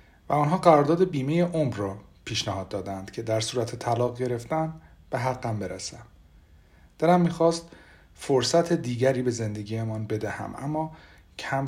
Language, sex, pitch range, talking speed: Persian, male, 110-140 Hz, 135 wpm